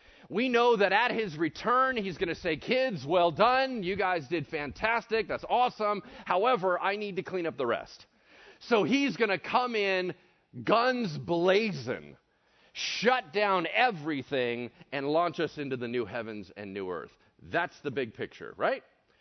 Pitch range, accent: 170-245 Hz, American